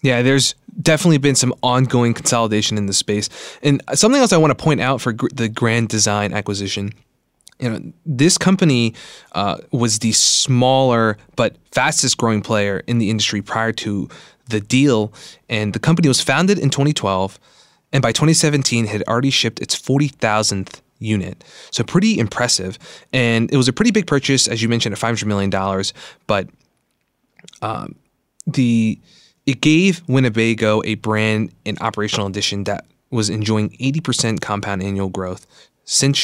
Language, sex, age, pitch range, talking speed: English, male, 20-39, 105-135 Hz, 155 wpm